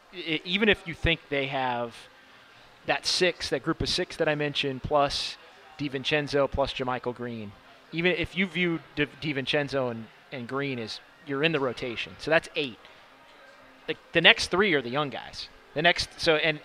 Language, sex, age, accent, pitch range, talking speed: English, male, 30-49, American, 135-165 Hz, 175 wpm